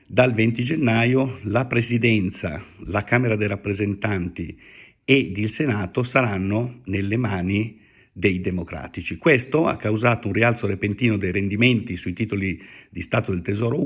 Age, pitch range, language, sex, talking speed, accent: 50-69, 95-120 Hz, Italian, male, 135 wpm, native